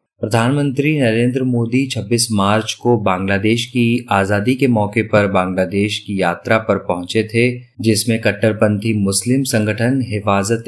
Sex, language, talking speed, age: male, Hindi, 130 wpm, 30-49